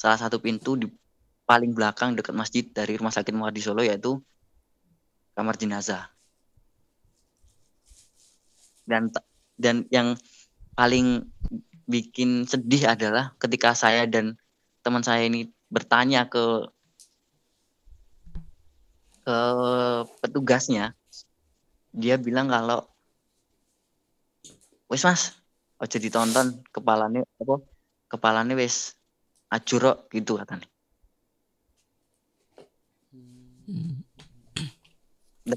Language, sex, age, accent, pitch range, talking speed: Indonesian, female, 20-39, native, 110-125 Hz, 80 wpm